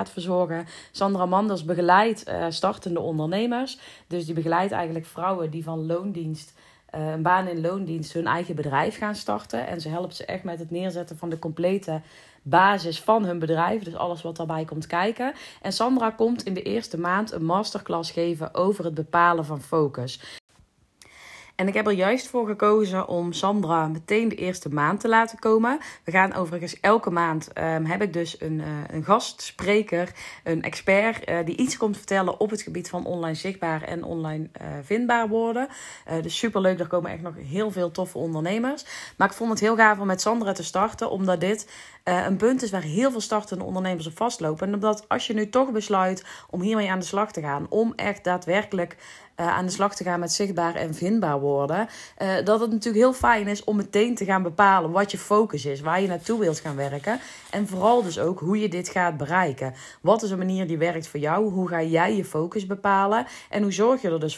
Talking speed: 205 wpm